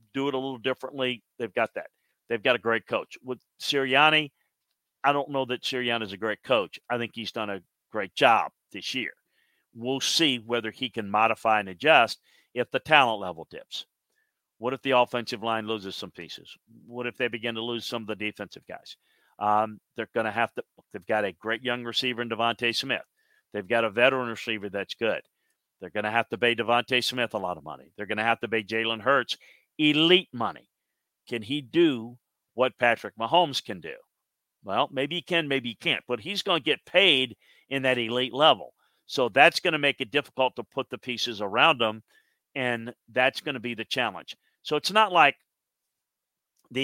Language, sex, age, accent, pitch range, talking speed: English, male, 50-69, American, 115-140 Hz, 200 wpm